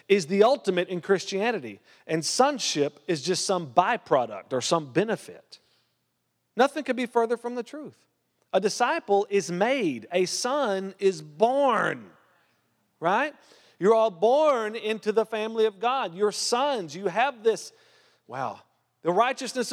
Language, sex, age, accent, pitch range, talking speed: English, male, 40-59, American, 185-250 Hz, 140 wpm